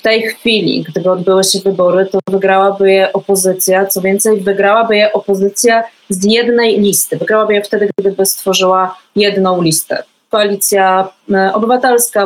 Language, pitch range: Polish, 185-225 Hz